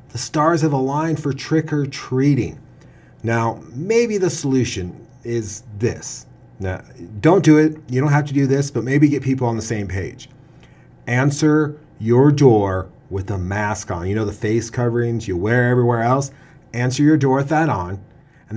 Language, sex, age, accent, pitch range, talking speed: English, male, 30-49, American, 110-140 Hz, 170 wpm